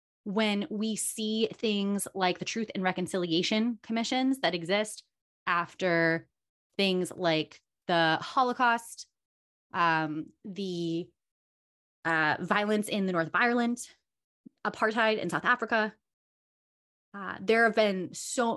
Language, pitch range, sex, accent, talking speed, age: English, 165-225 Hz, female, American, 115 wpm, 20-39